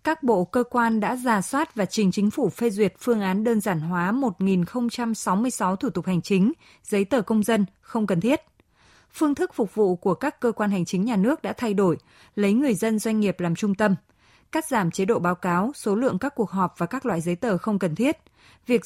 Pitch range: 185-245 Hz